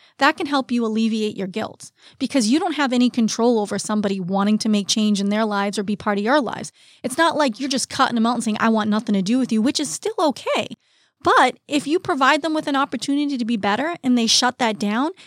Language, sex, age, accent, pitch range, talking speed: English, female, 30-49, American, 215-290 Hz, 255 wpm